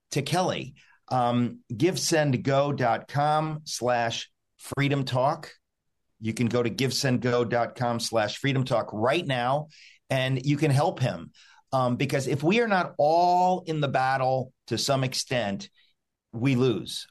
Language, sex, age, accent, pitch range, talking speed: English, male, 50-69, American, 115-135 Hz, 145 wpm